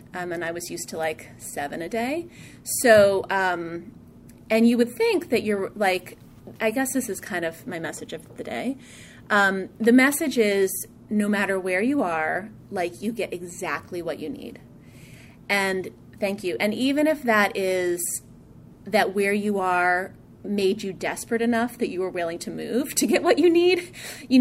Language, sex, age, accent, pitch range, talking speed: English, female, 30-49, American, 180-230 Hz, 180 wpm